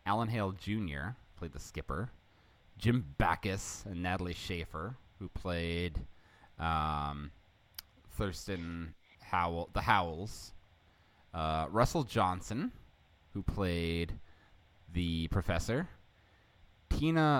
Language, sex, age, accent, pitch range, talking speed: English, male, 20-39, American, 80-95 Hz, 90 wpm